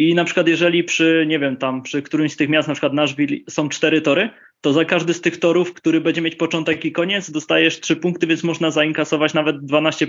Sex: male